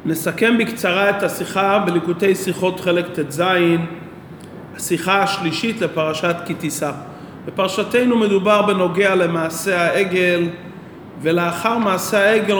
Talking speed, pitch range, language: 95 wpm, 170-225 Hz, English